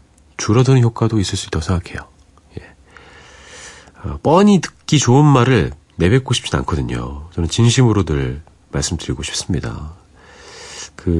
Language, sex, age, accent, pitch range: Korean, male, 40-59, native, 75-120 Hz